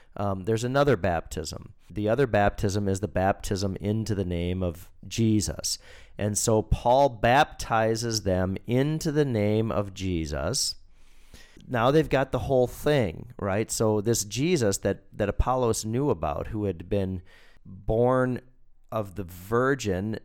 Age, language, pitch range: 40-59, English, 95-125 Hz